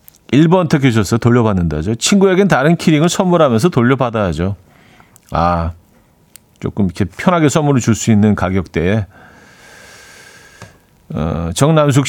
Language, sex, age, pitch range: Korean, male, 40-59, 100-150 Hz